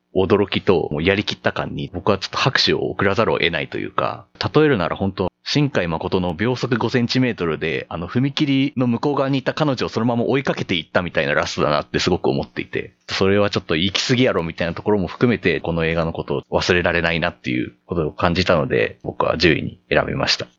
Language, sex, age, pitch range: Japanese, male, 40-59, 85-125 Hz